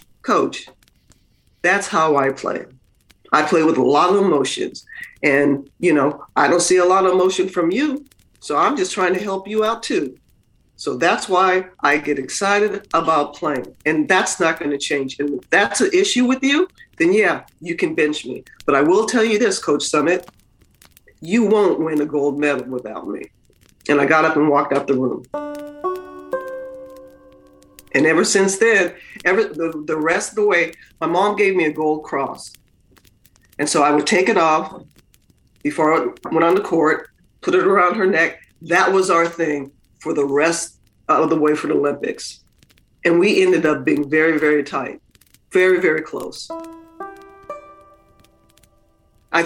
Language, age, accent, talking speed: English, 40-59, American, 175 wpm